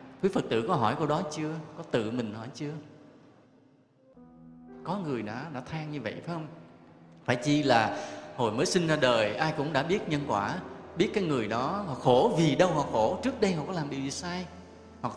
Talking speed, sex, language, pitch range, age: 220 wpm, male, Vietnamese, 110-170 Hz, 20-39